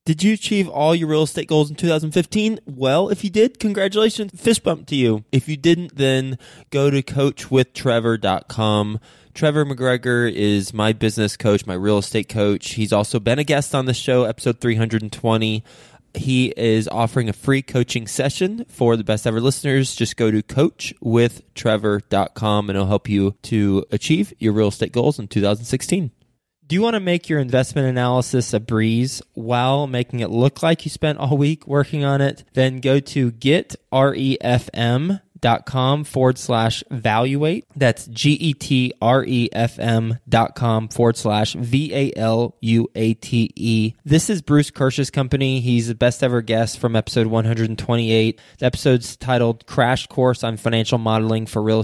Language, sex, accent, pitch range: English, male, American, 110-140 Hz